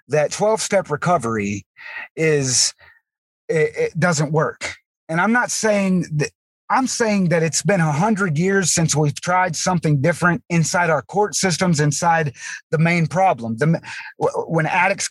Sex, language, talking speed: male, English, 145 wpm